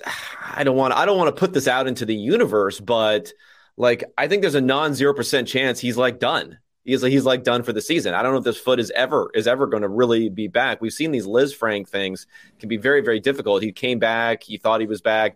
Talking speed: 265 wpm